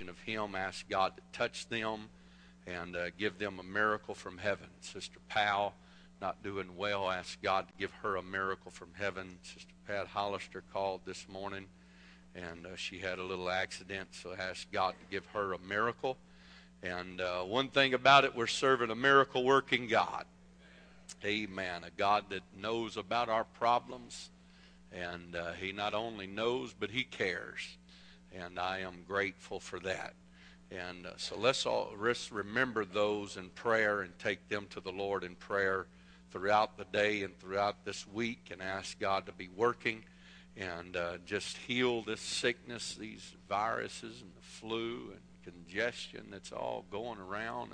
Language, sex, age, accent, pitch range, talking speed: English, male, 50-69, American, 85-105 Hz, 165 wpm